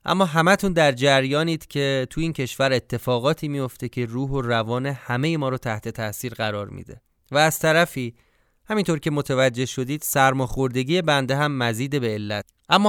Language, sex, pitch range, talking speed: Persian, male, 120-160 Hz, 170 wpm